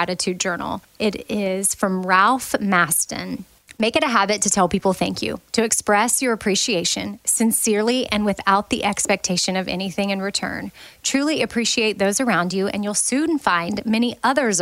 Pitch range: 185-230 Hz